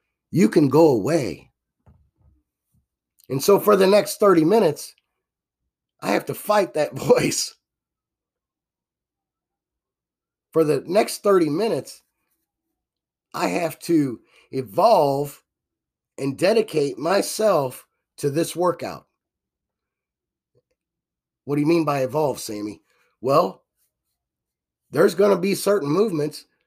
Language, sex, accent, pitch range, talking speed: English, male, American, 110-165 Hz, 105 wpm